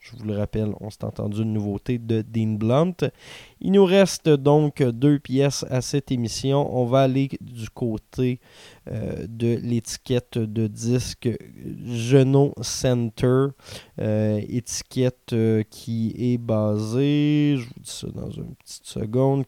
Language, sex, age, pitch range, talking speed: French, male, 20-39, 110-135 Hz, 145 wpm